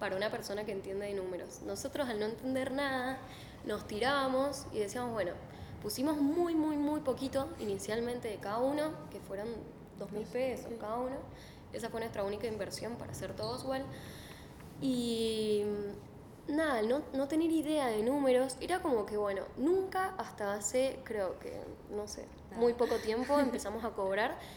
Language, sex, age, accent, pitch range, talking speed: Spanish, female, 10-29, Argentinian, 200-245 Hz, 165 wpm